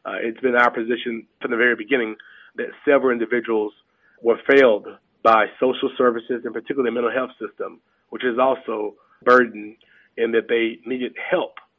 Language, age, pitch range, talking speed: English, 40-59, 115-135 Hz, 170 wpm